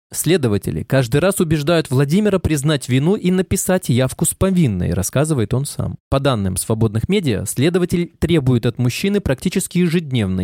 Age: 20-39